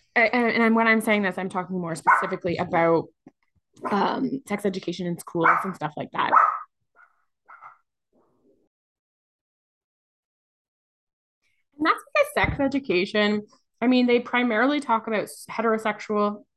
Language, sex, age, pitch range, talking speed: English, female, 20-39, 190-245 Hz, 110 wpm